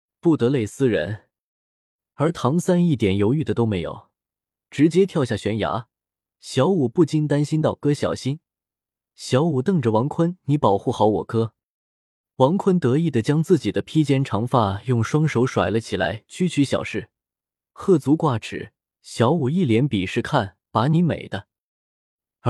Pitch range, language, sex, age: 110-160 Hz, Chinese, male, 20-39